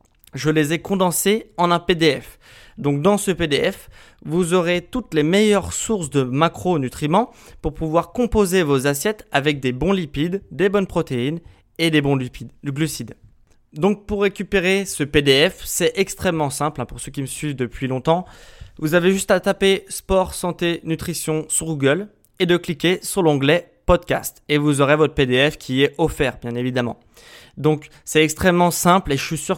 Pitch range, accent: 150-195 Hz, French